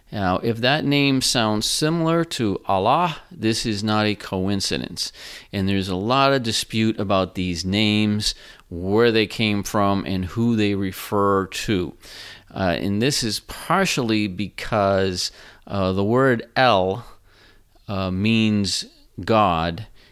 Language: English